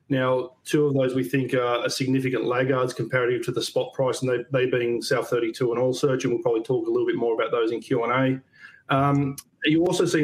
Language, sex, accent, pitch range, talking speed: English, male, Australian, 125-145 Hz, 210 wpm